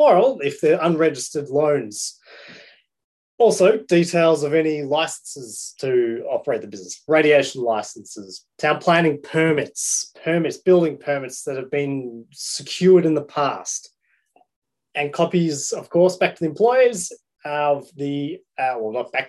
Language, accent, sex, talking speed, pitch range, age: English, Australian, male, 130 wpm, 145-185 Hz, 20-39